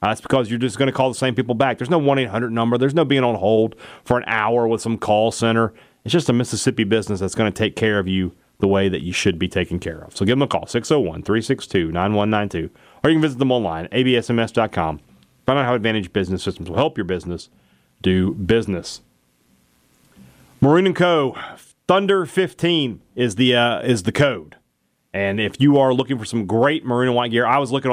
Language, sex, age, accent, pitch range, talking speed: English, male, 30-49, American, 105-140 Hz, 205 wpm